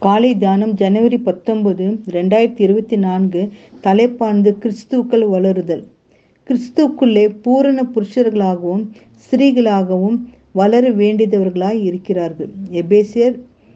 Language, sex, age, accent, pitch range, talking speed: Tamil, female, 50-69, native, 200-250 Hz, 70 wpm